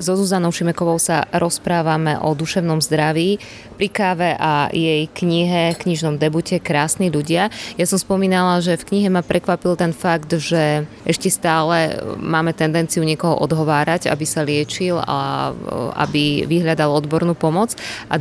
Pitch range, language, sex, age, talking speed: 155-175 Hz, Slovak, female, 20-39, 140 wpm